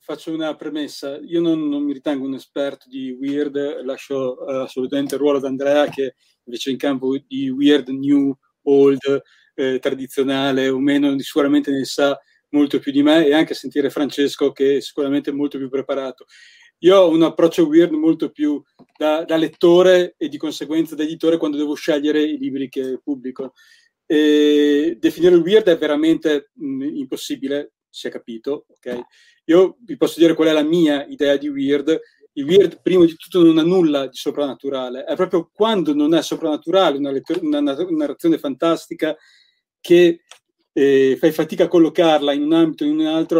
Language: Italian